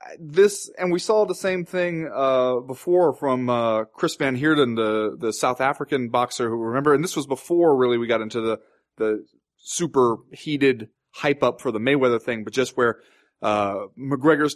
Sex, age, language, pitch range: male, 30-49, English, 115-155 Hz